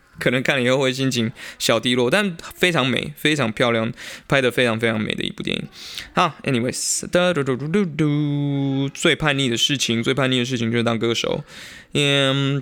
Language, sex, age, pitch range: Chinese, male, 20-39, 120-170 Hz